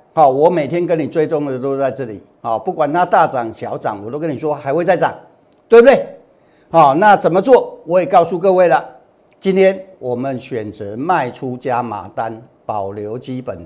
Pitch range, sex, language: 125-170 Hz, male, Chinese